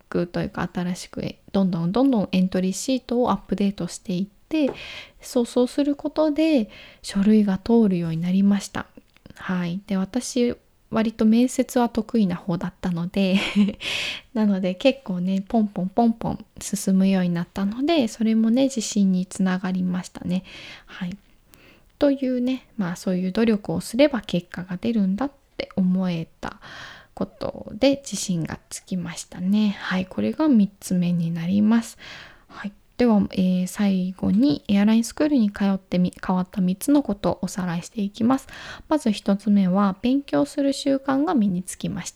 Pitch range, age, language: 185-245 Hz, 10-29, Japanese